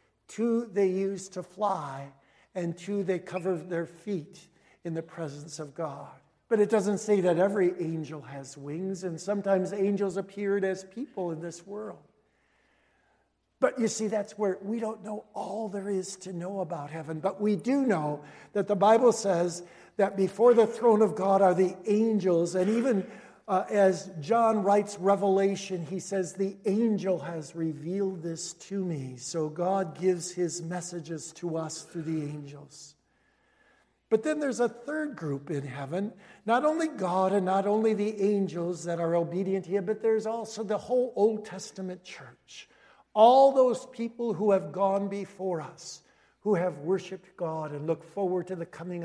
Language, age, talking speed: English, 60-79, 170 wpm